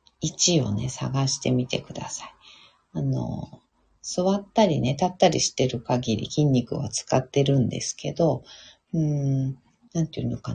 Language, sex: Japanese, female